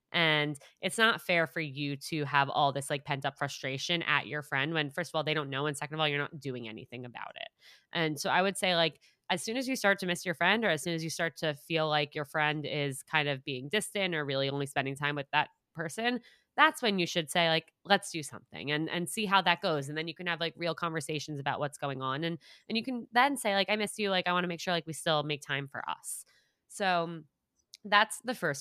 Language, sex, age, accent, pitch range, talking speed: English, female, 20-39, American, 145-175 Hz, 265 wpm